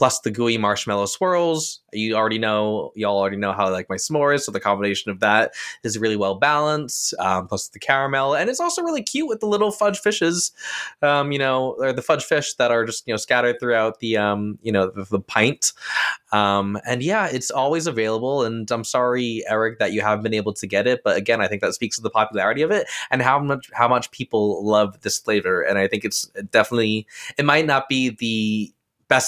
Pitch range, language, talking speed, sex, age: 105-135 Hz, English, 225 wpm, male, 20-39